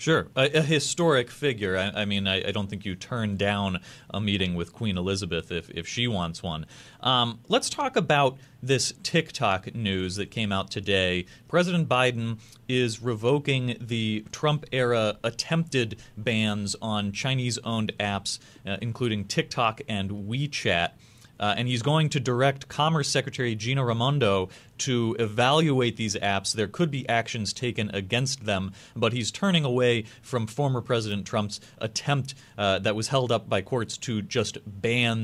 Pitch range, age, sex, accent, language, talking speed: 105-135 Hz, 30-49, male, American, English, 160 wpm